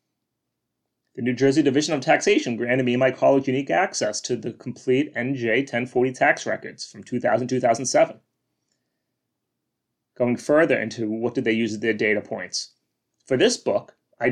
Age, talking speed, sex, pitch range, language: 30-49, 150 wpm, male, 120-140 Hz, English